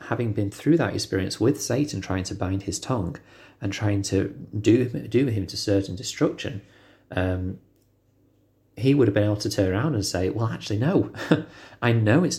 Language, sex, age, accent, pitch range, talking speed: English, male, 30-49, British, 95-110 Hz, 180 wpm